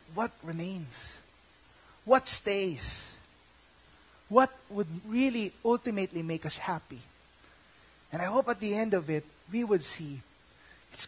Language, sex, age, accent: English, male, 20-39, Filipino